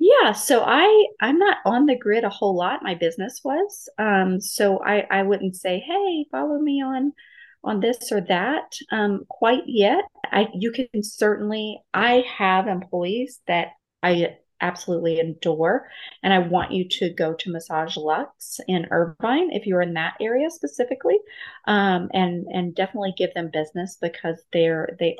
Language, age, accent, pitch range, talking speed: English, 30-49, American, 175-235 Hz, 165 wpm